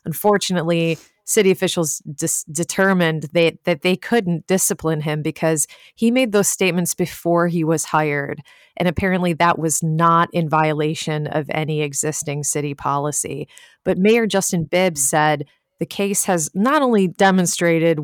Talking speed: 135 wpm